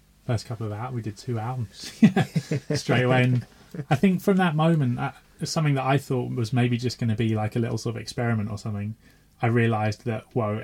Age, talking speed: 20-39, 215 wpm